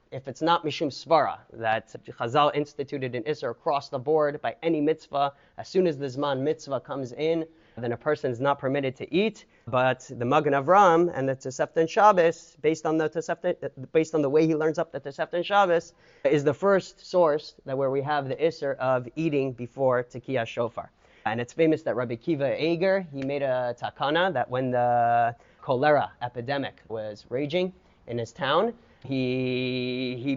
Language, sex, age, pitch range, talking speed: English, male, 30-49, 130-165 Hz, 185 wpm